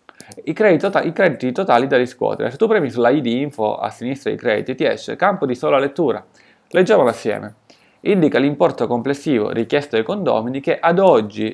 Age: 30-49